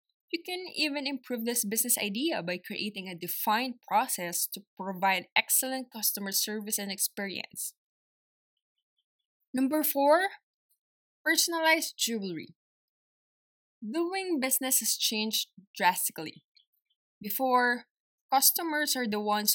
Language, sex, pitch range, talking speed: English, female, 195-255 Hz, 100 wpm